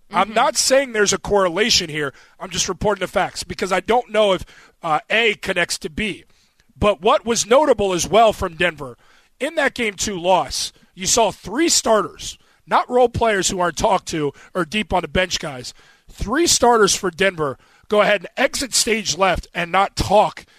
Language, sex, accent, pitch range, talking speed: English, male, American, 180-235 Hz, 190 wpm